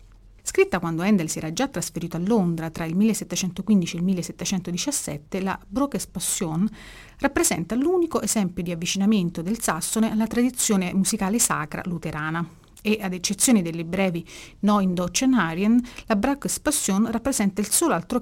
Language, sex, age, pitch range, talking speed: Italian, female, 40-59, 170-220 Hz, 150 wpm